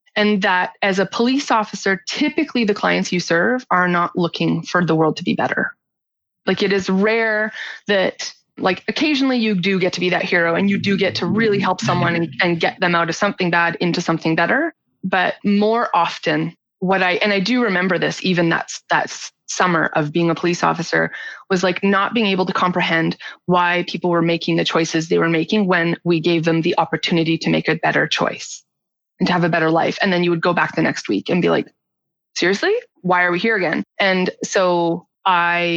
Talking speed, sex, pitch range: 210 wpm, female, 170-205 Hz